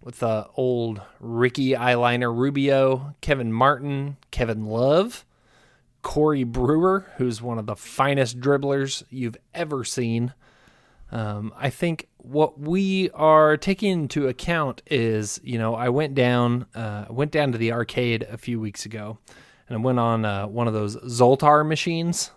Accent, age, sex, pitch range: American, 20-39, male, 115-150 Hz